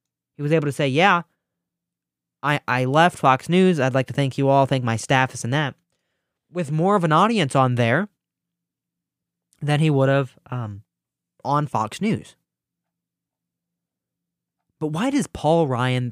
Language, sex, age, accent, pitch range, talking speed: English, male, 20-39, American, 125-170 Hz, 155 wpm